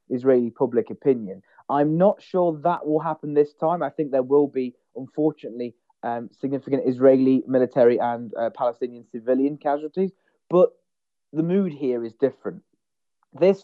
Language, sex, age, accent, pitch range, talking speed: Czech, male, 30-49, British, 120-150 Hz, 145 wpm